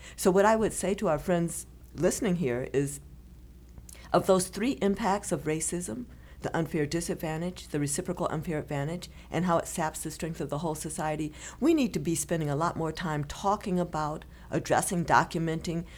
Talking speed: 175 wpm